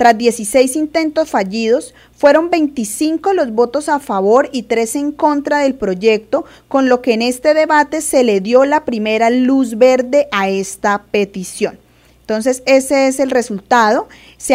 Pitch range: 215-275 Hz